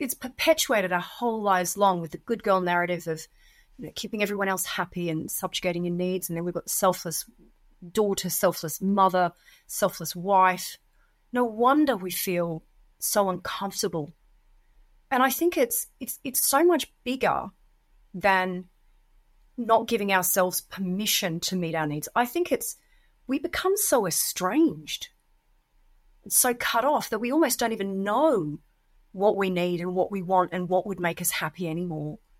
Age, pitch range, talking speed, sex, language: 30-49, 175-255 Hz, 160 wpm, female, English